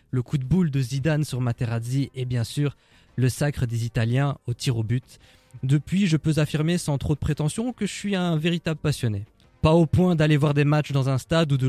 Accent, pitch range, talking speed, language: French, 125-160 Hz, 230 wpm, French